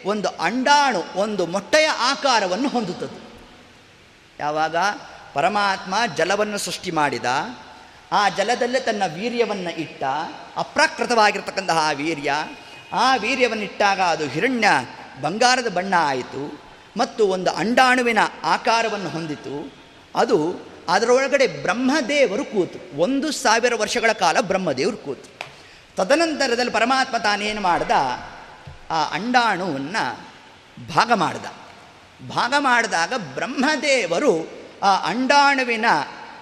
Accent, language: native, Kannada